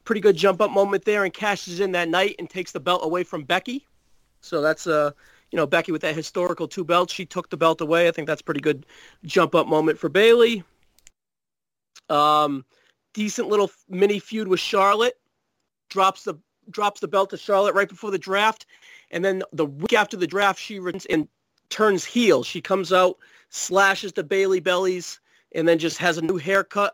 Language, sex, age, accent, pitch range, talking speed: English, male, 40-59, American, 170-205 Hz, 200 wpm